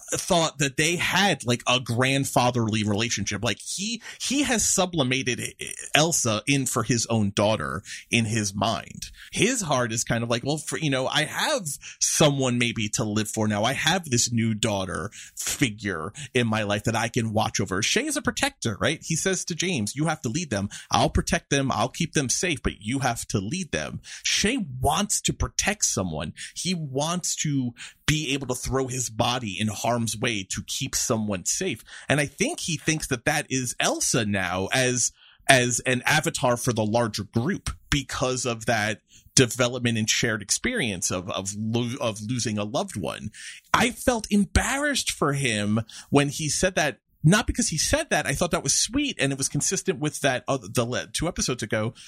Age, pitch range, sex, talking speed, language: 30-49, 115-155 Hz, male, 190 wpm, English